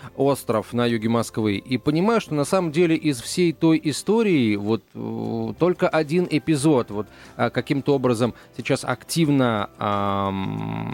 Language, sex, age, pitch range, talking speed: Russian, male, 30-49, 125-180 Hz, 130 wpm